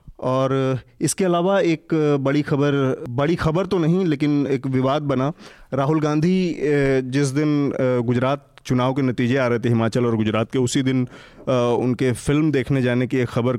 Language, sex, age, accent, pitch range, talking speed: Hindi, male, 30-49, native, 125-150 Hz, 165 wpm